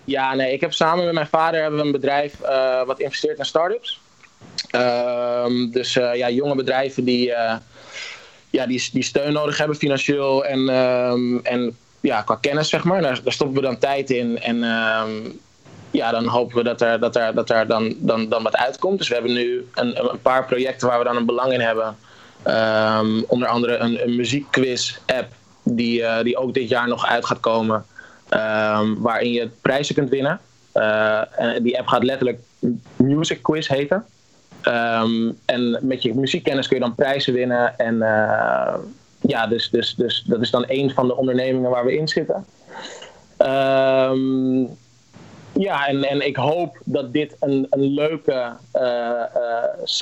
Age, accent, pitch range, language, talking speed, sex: 20-39, Dutch, 120-135 Hz, Dutch, 170 wpm, male